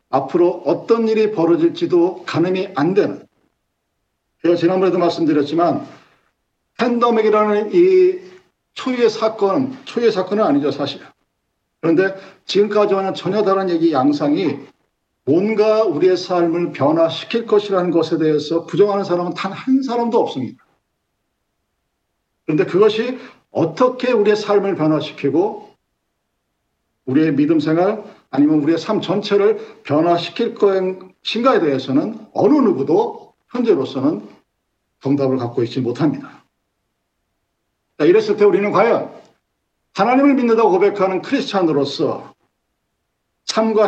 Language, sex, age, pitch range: Korean, male, 50-69, 165-250 Hz